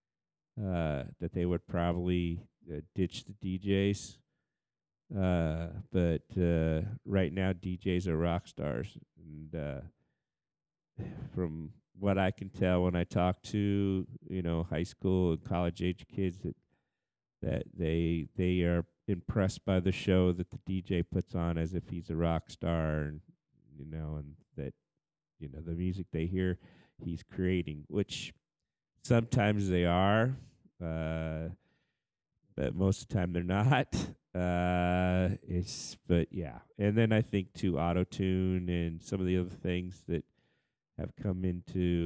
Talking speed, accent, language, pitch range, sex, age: 145 wpm, American, English, 85-95 Hz, male, 50-69